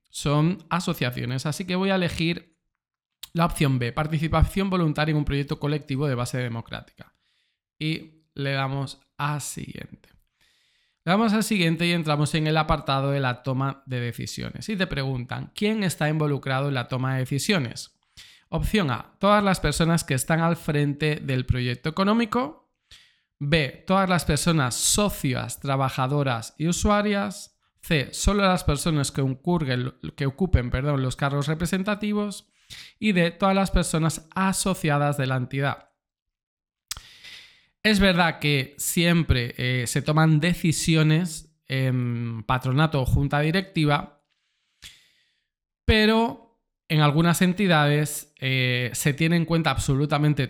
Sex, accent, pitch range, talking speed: male, Spanish, 135-175 Hz, 135 wpm